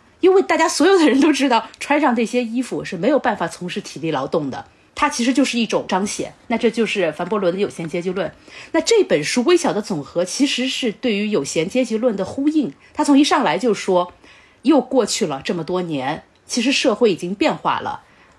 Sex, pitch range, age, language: female, 190-275 Hz, 30-49, Chinese